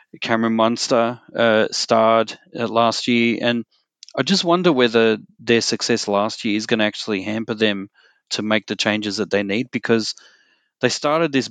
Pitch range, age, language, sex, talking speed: 105-125 Hz, 30-49, English, male, 170 wpm